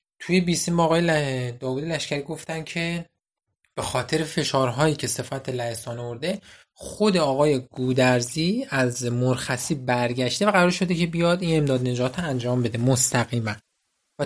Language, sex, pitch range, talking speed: Persian, male, 130-175 Hz, 135 wpm